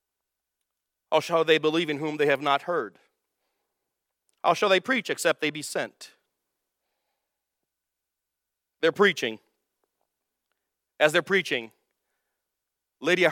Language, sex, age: English, male, 40-59